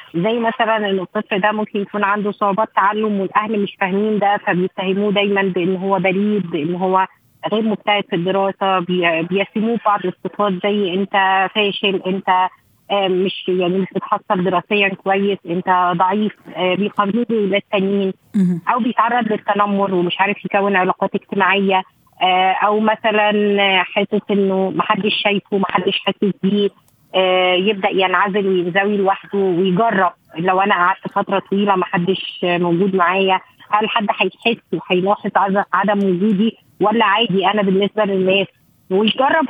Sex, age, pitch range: female, 20-39, 190-215 Hz